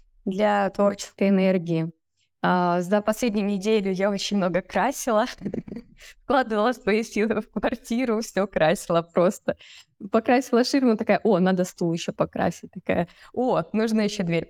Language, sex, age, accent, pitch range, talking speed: Russian, female, 20-39, native, 180-225 Hz, 135 wpm